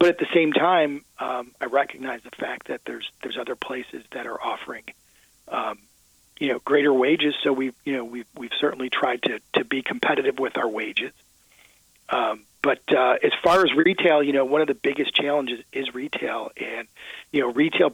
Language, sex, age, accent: Japanese, male, 40-59, American